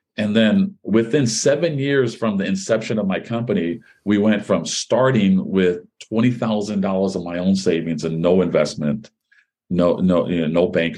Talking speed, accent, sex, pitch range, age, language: 175 wpm, American, male, 95-115 Hz, 40-59, English